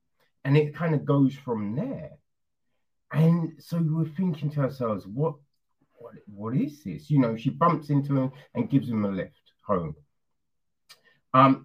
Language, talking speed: English, 160 wpm